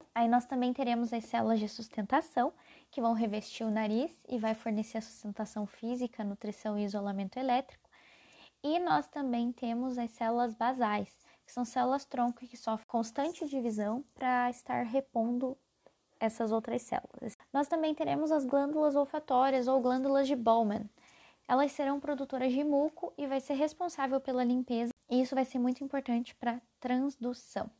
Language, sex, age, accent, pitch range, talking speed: Portuguese, female, 10-29, Brazilian, 230-275 Hz, 160 wpm